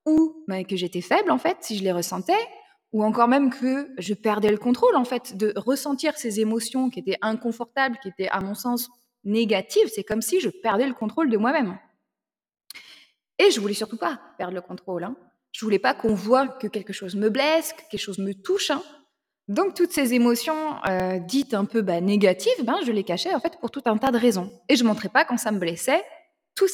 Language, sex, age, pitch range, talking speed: French, female, 20-39, 195-275 Hz, 230 wpm